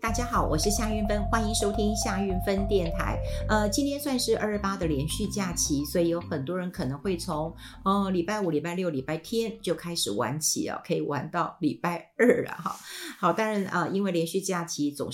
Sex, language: female, Chinese